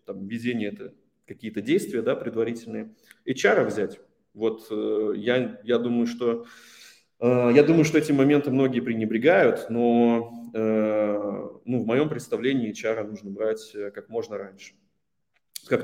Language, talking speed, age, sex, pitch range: Russian, 125 wpm, 20-39, male, 105-120 Hz